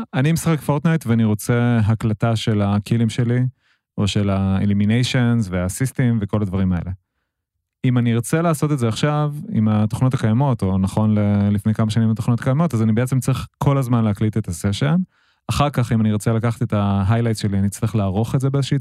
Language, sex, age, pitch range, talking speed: Hebrew, male, 30-49, 105-130 Hz, 185 wpm